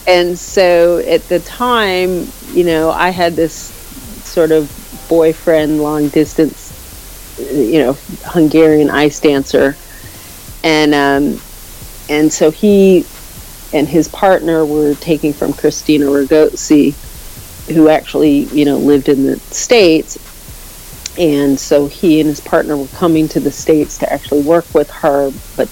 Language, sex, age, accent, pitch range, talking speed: English, female, 40-59, American, 145-185 Hz, 135 wpm